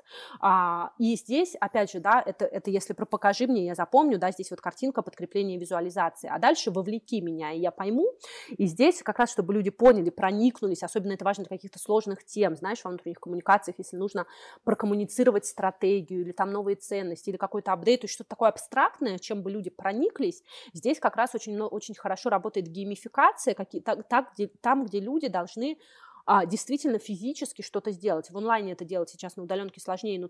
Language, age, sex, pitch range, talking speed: Russian, 20-39, female, 185-220 Hz, 175 wpm